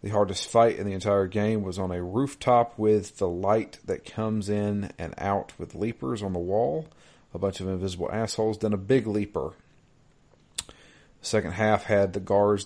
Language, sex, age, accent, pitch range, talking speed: English, male, 40-59, American, 100-115 Hz, 180 wpm